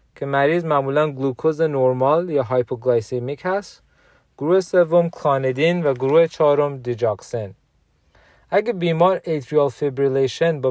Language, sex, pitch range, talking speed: Persian, male, 125-155 Hz, 110 wpm